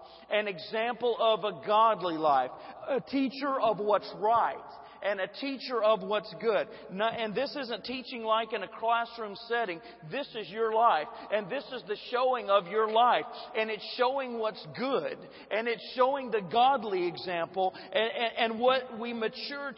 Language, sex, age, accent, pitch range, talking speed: English, male, 40-59, American, 185-230 Hz, 160 wpm